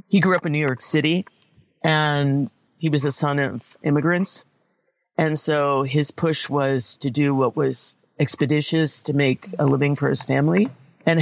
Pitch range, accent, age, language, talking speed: 145-165 Hz, American, 50-69, English, 170 wpm